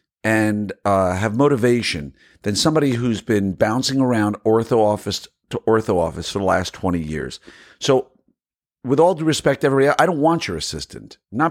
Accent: American